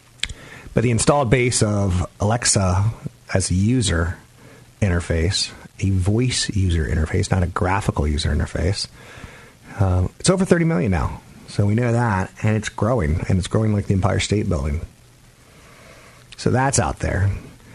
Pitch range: 95-125 Hz